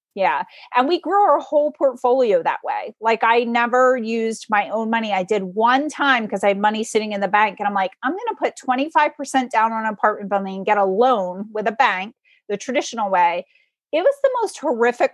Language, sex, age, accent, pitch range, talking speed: English, female, 30-49, American, 210-275 Hz, 220 wpm